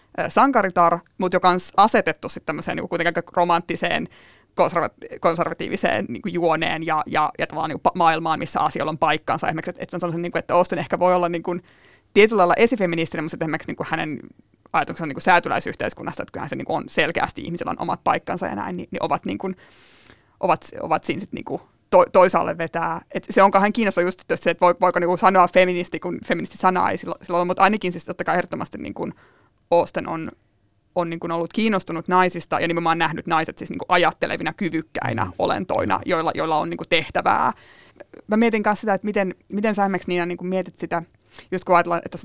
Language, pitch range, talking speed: Finnish, 165-190 Hz, 185 wpm